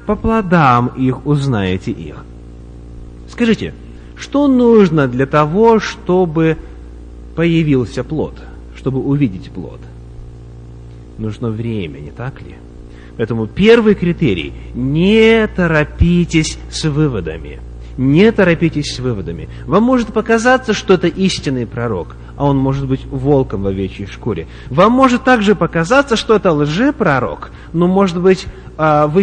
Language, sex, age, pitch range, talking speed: English, male, 30-49, 125-190 Hz, 120 wpm